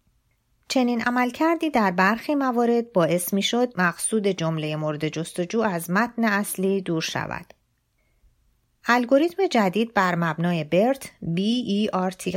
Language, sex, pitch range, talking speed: Persian, female, 170-225 Hz, 115 wpm